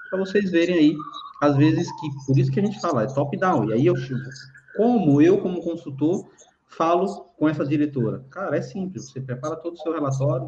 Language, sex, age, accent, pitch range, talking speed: Portuguese, male, 20-39, Brazilian, 130-160 Hz, 210 wpm